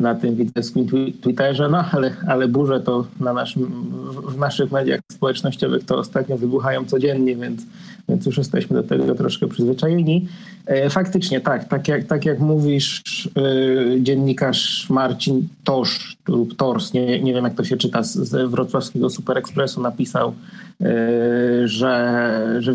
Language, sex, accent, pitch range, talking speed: Polish, male, native, 130-160 Hz, 145 wpm